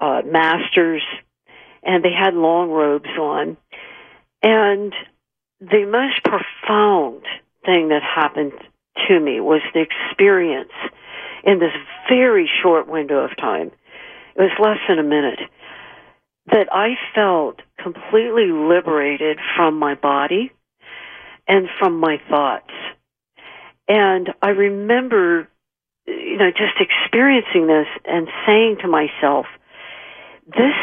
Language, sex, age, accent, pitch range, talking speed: English, female, 60-79, American, 155-215 Hz, 115 wpm